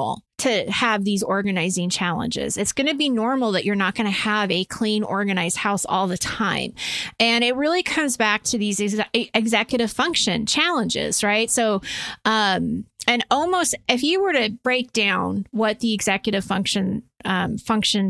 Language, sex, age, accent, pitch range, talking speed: English, female, 30-49, American, 205-240 Hz, 155 wpm